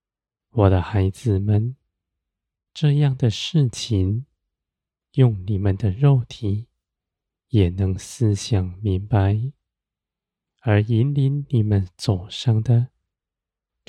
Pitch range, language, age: 95-125 Hz, Chinese, 20-39